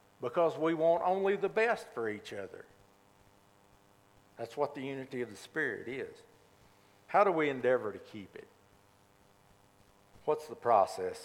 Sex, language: male, English